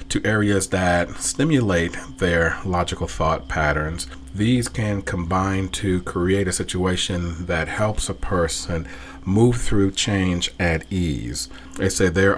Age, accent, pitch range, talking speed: 40-59, American, 85-100 Hz, 130 wpm